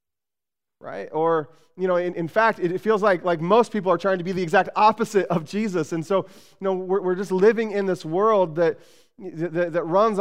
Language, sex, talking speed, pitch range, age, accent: English, male, 225 wpm, 155-195 Hz, 20-39, American